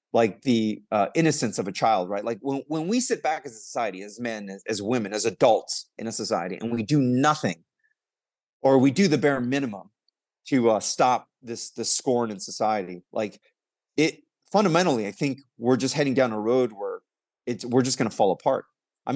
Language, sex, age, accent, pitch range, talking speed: English, male, 30-49, American, 115-145 Hz, 205 wpm